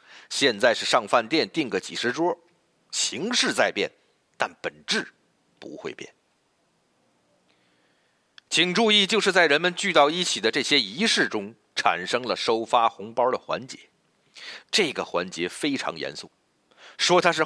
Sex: male